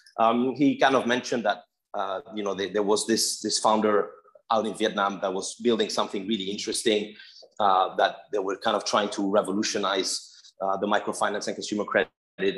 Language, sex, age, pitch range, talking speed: English, male, 30-49, 100-135 Hz, 180 wpm